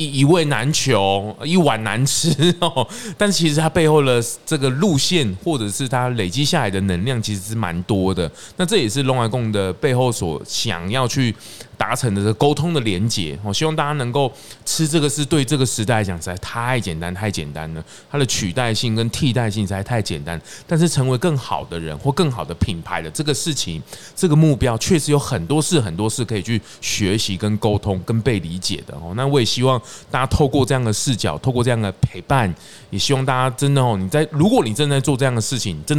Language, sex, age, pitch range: Chinese, male, 20-39, 105-145 Hz